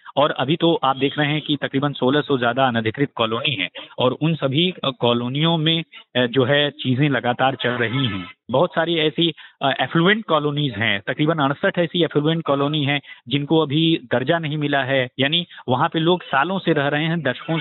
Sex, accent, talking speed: male, native, 185 wpm